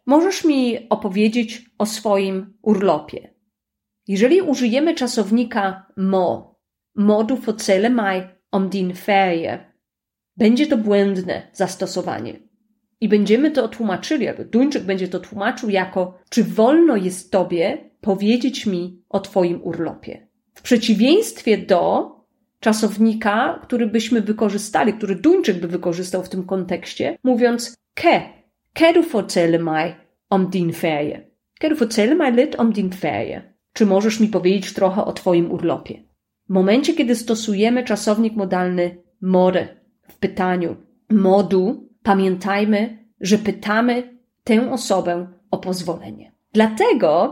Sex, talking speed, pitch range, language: female, 110 wpm, 190-240 Hz, Polish